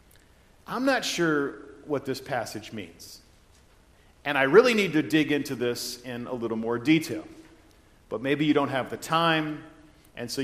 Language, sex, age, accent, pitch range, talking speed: English, male, 40-59, American, 130-170 Hz, 165 wpm